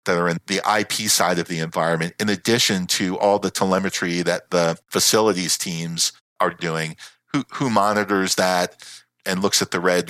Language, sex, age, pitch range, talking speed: English, male, 50-69, 90-115 Hz, 180 wpm